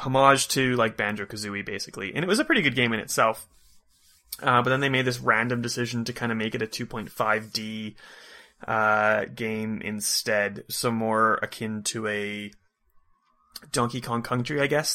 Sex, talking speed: male, 170 wpm